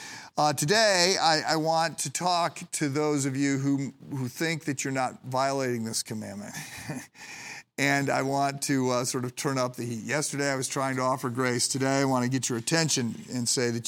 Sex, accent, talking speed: male, American, 210 wpm